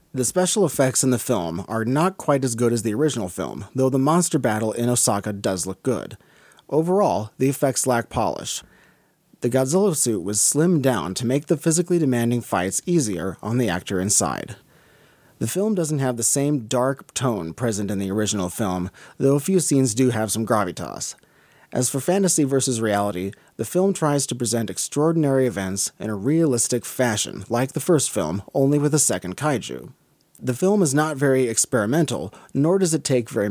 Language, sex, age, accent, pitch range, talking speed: English, male, 30-49, American, 110-150 Hz, 185 wpm